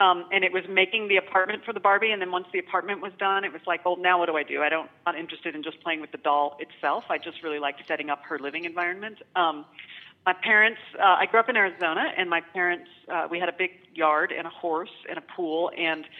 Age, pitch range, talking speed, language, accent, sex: 40-59, 160-205 Hz, 265 wpm, English, American, female